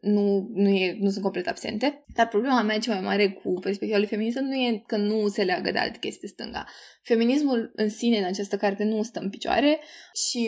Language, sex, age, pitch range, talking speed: Romanian, female, 20-39, 200-225 Hz, 220 wpm